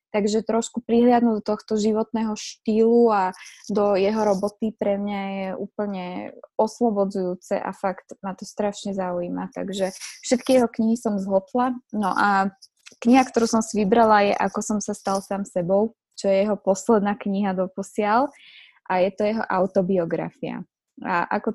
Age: 20-39